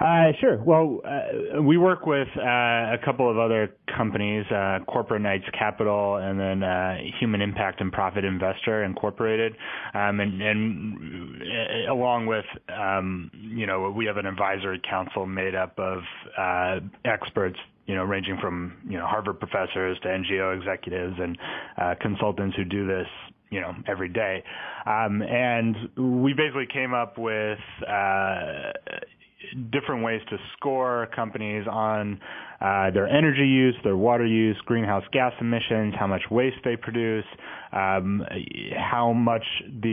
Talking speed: 145 wpm